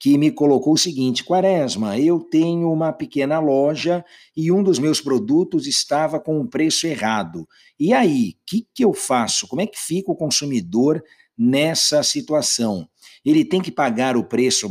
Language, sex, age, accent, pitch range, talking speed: Portuguese, male, 60-79, Brazilian, 120-190 Hz, 165 wpm